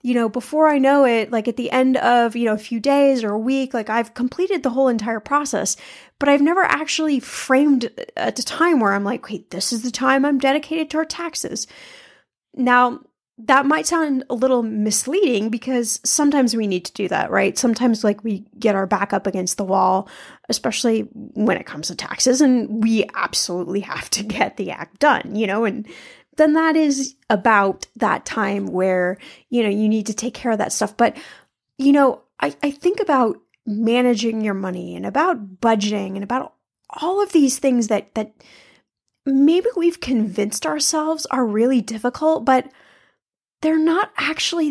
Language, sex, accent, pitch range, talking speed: English, female, American, 215-285 Hz, 185 wpm